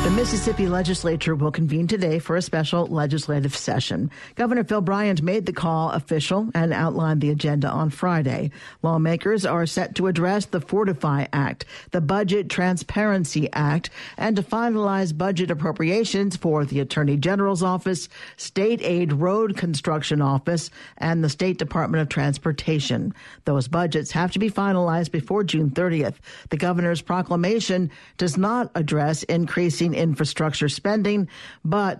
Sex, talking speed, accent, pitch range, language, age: male, 145 wpm, American, 155-185 Hz, English, 50-69